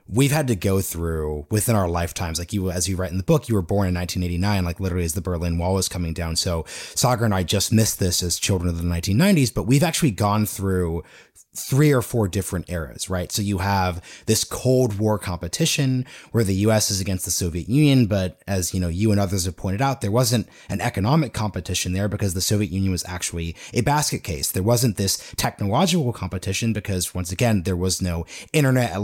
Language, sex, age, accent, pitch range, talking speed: English, male, 30-49, American, 90-120 Hz, 220 wpm